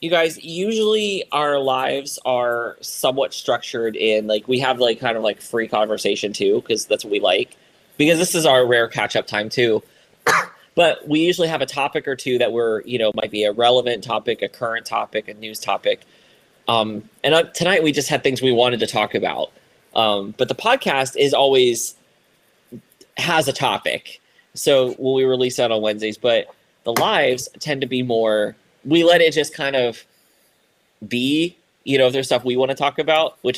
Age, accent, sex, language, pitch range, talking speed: 20-39, American, male, English, 120-155 Hz, 195 wpm